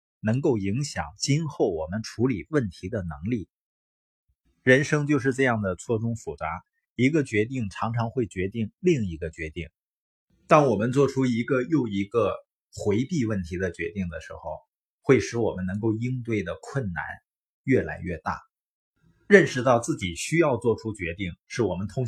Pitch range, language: 90-130 Hz, Chinese